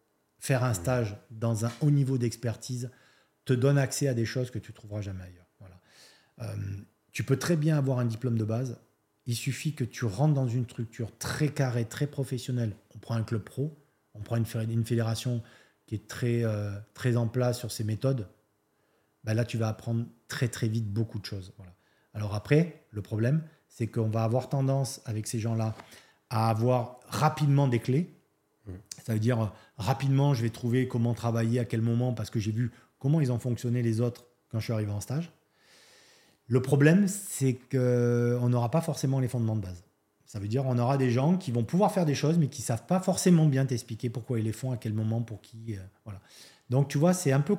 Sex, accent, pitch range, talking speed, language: male, French, 110-140 Hz, 215 wpm, French